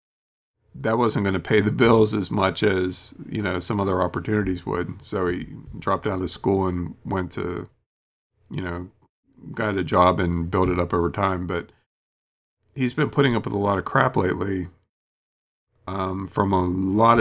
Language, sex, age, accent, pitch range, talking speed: English, male, 40-59, American, 90-110 Hz, 180 wpm